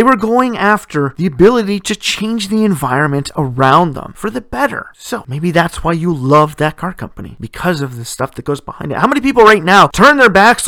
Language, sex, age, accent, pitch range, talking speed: English, male, 40-59, American, 160-225 Hz, 225 wpm